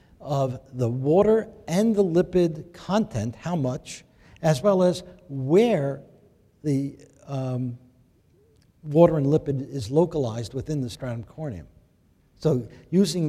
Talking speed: 115 wpm